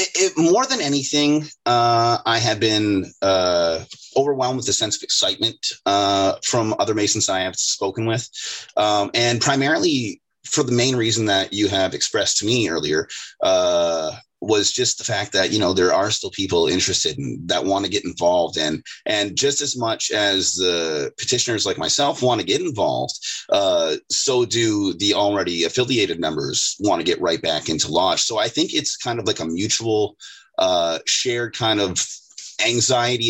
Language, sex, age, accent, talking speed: English, male, 30-49, American, 170 wpm